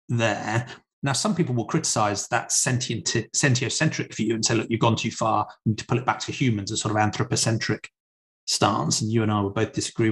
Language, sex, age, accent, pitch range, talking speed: English, male, 30-49, British, 110-135 Hz, 220 wpm